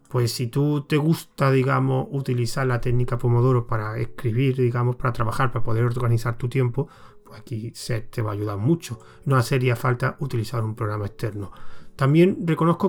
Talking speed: 170 wpm